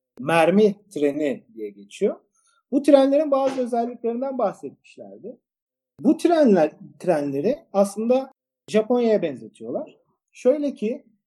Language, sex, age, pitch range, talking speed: Turkish, male, 50-69, 190-260 Hz, 90 wpm